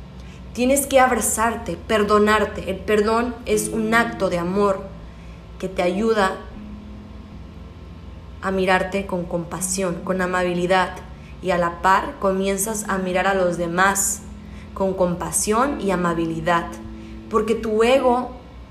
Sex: female